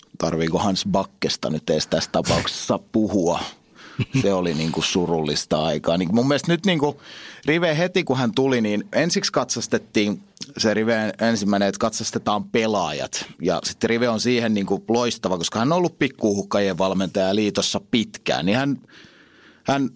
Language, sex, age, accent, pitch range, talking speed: Finnish, male, 30-49, native, 100-130 Hz, 160 wpm